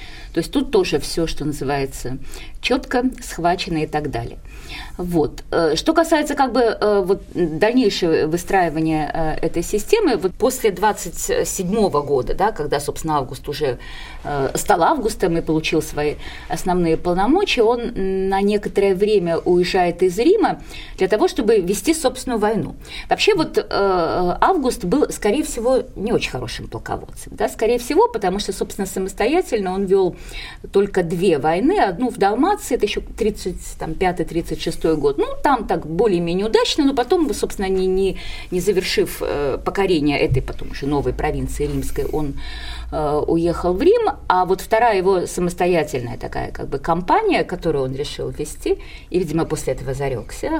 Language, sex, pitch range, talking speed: Russian, female, 165-250 Hz, 145 wpm